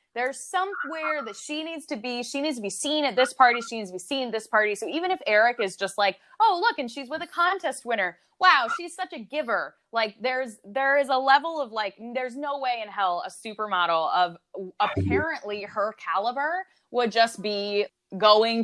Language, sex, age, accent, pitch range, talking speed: English, female, 20-39, American, 190-295 Hz, 215 wpm